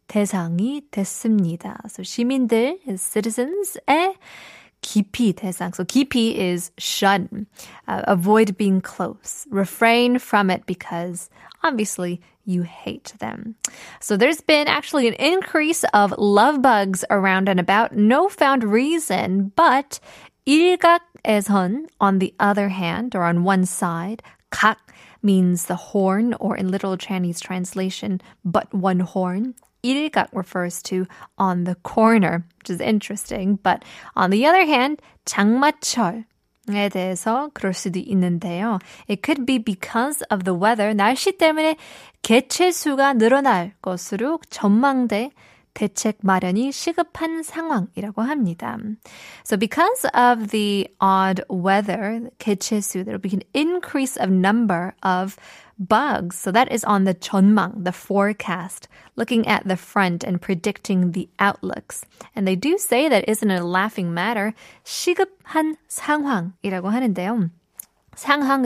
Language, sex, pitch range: Korean, female, 190-250 Hz